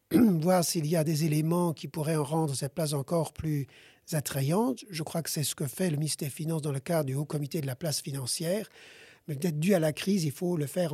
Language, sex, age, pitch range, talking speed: French, male, 50-69, 145-180 Hz, 250 wpm